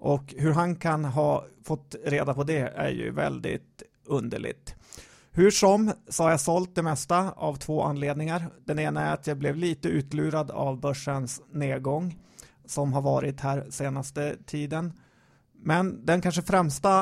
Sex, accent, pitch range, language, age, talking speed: male, native, 140-170 Hz, Swedish, 30-49, 160 wpm